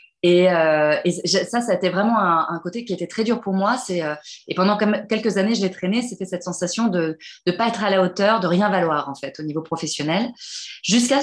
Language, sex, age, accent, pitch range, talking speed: French, female, 20-39, French, 165-225 Hz, 240 wpm